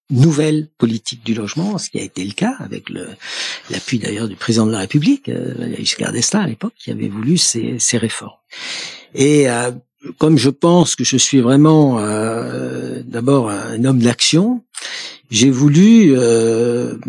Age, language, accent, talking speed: 60-79, French, French, 165 wpm